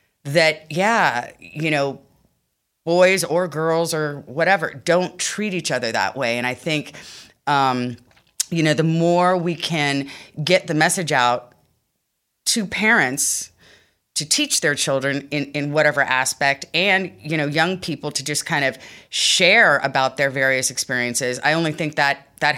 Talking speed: 155 wpm